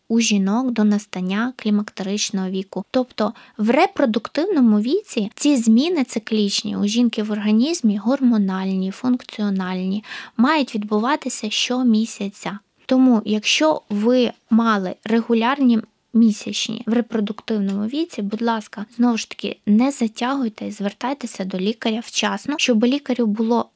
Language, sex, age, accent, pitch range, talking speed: Ukrainian, female, 20-39, native, 210-255 Hz, 115 wpm